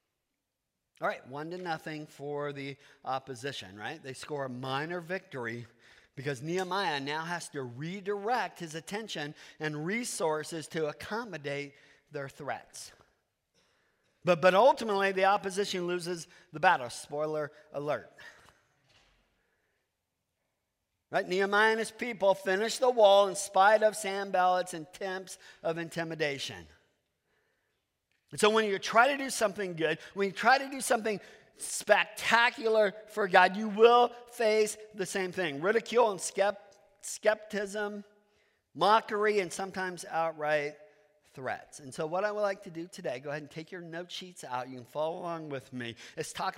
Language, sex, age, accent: English, male, 50-69, American